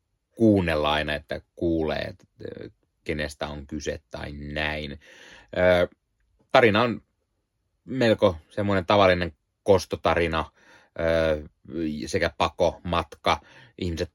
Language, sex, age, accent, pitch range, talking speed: Finnish, male, 30-49, native, 75-90 Hz, 80 wpm